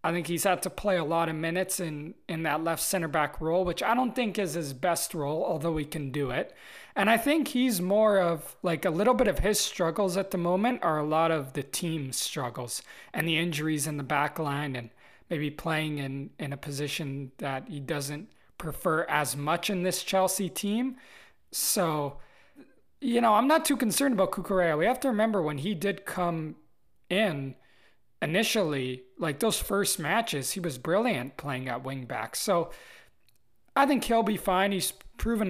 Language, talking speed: English, 195 wpm